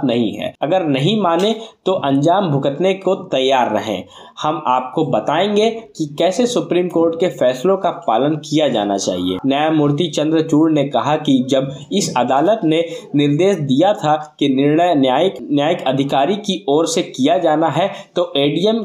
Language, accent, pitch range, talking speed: Hindi, native, 135-185 Hz, 160 wpm